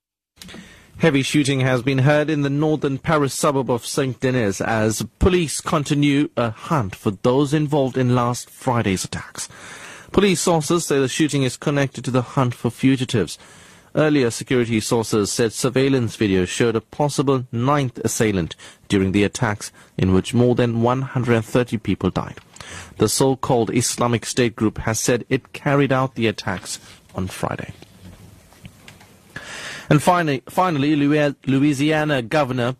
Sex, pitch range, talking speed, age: male, 115-145 Hz, 140 wpm, 30-49